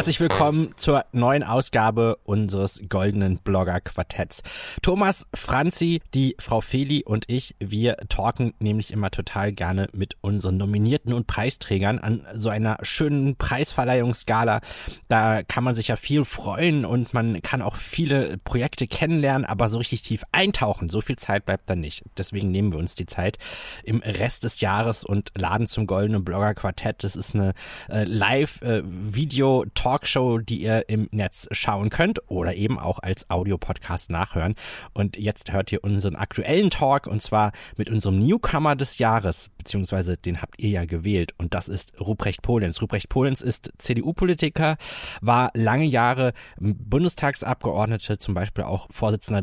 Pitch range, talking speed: 100-130 Hz, 160 wpm